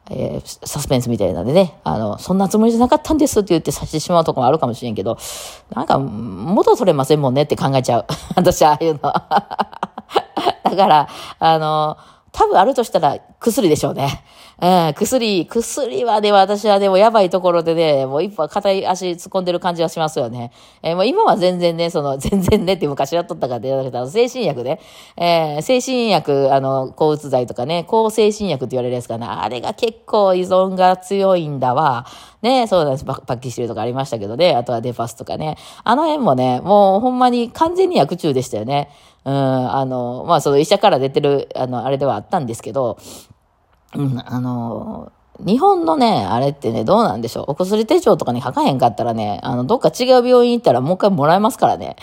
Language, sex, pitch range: Japanese, female, 135-195 Hz